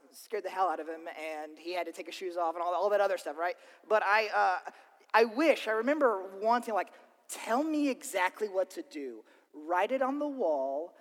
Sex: male